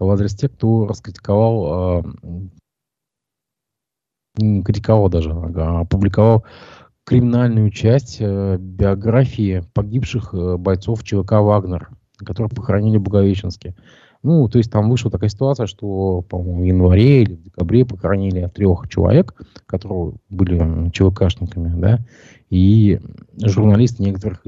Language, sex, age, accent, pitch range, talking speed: Russian, male, 20-39, native, 95-115 Hz, 105 wpm